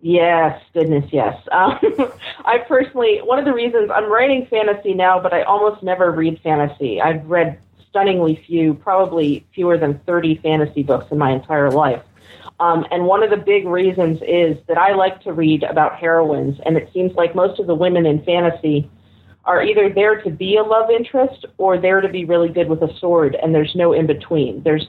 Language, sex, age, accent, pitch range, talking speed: English, female, 40-59, American, 155-185 Hz, 200 wpm